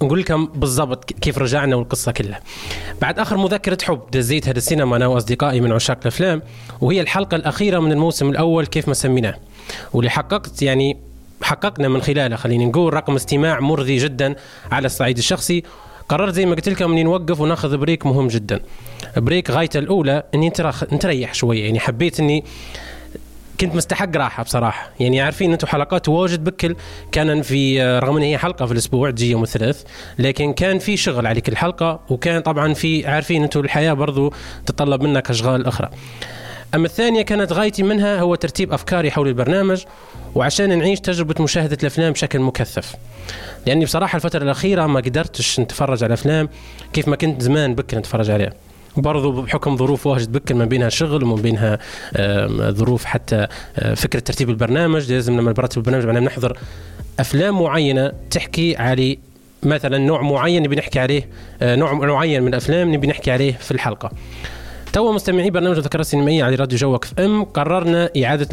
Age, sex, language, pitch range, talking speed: 20-39, male, Arabic, 125-165 Hz, 160 wpm